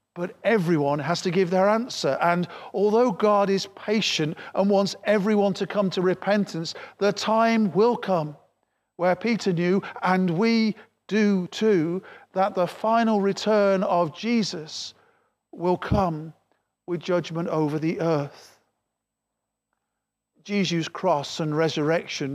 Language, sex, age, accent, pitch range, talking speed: English, male, 50-69, British, 170-205 Hz, 125 wpm